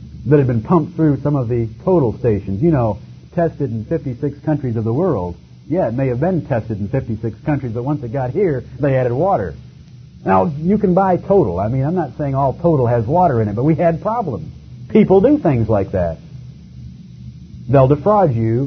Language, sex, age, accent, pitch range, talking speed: English, male, 50-69, American, 110-170 Hz, 205 wpm